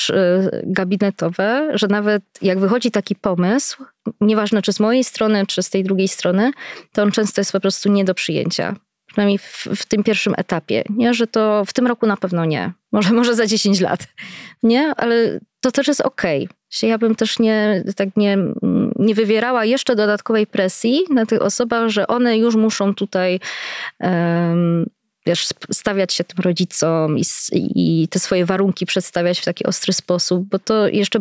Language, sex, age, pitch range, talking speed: Polish, female, 20-39, 190-225 Hz, 175 wpm